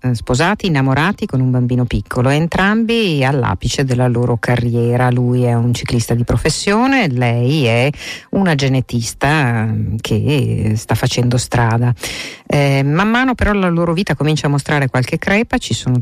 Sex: female